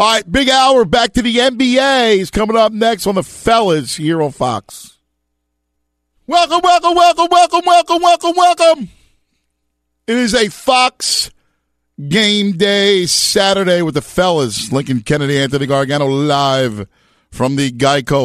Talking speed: 140 wpm